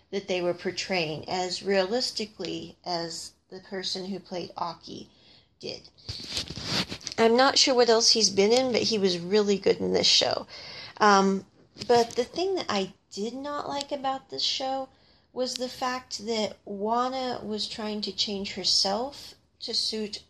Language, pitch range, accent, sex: English, 190-245 Hz, American, female